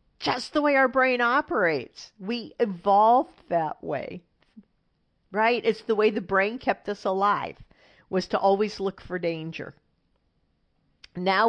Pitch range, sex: 175-230 Hz, female